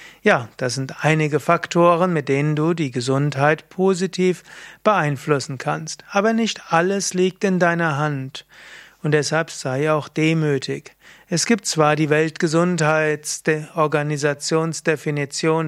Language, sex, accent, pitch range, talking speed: German, male, German, 145-170 Hz, 115 wpm